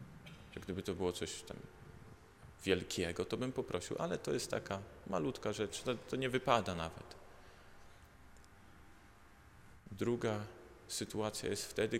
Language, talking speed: Polish, 115 wpm